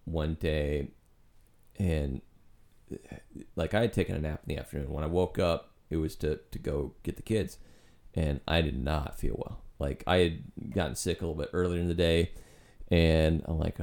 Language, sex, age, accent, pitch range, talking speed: English, male, 30-49, American, 80-95 Hz, 195 wpm